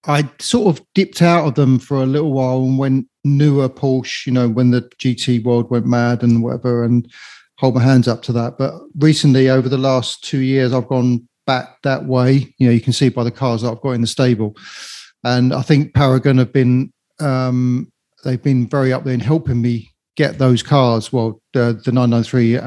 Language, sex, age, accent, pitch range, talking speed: English, male, 40-59, British, 120-140 Hz, 210 wpm